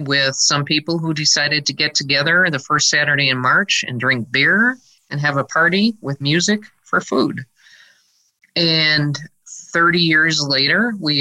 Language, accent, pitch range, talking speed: English, American, 135-160 Hz, 155 wpm